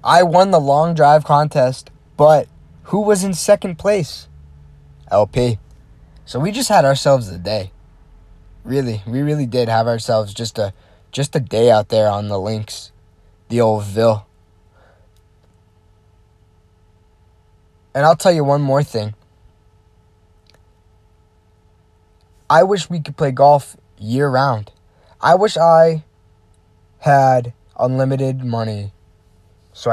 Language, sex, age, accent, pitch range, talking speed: English, male, 20-39, American, 90-135 Hz, 120 wpm